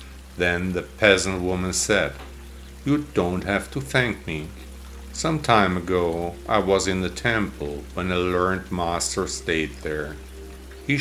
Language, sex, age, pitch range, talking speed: English, male, 50-69, 70-100 Hz, 140 wpm